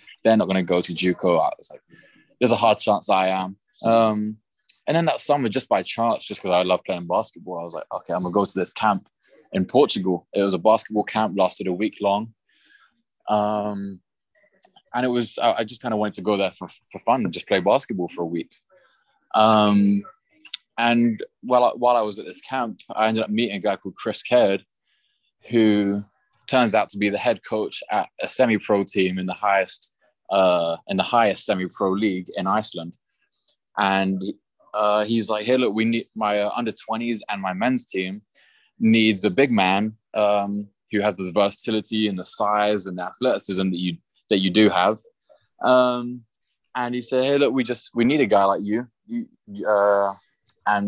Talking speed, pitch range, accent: 200 wpm, 100-115 Hz, British